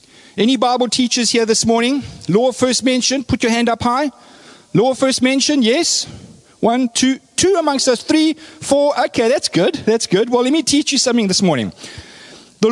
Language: English